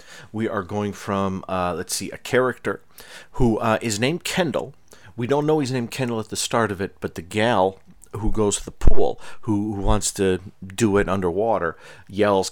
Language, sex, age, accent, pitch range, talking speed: English, male, 40-59, American, 85-110 Hz, 195 wpm